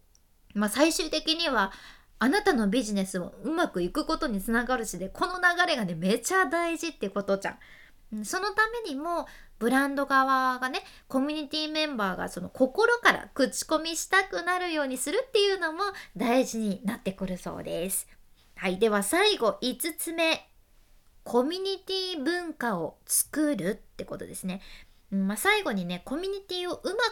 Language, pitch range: Japanese, 200-320 Hz